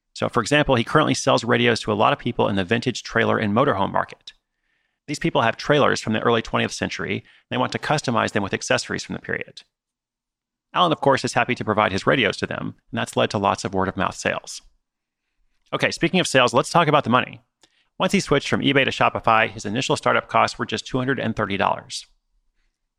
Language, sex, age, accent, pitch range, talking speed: English, male, 30-49, American, 110-140 Hz, 215 wpm